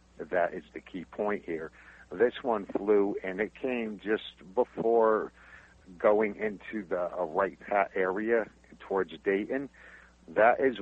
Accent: American